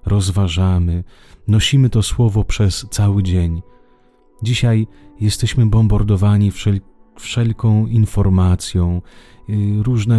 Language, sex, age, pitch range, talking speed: Italian, male, 40-59, 90-120 Hz, 75 wpm